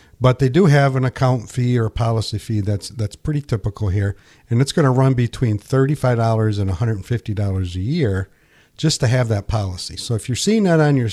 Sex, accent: male, American